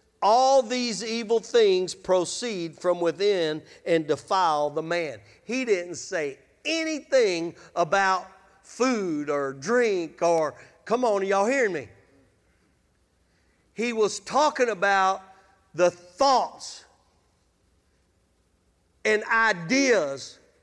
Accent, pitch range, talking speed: American, 180-255 Hz, 100 wpm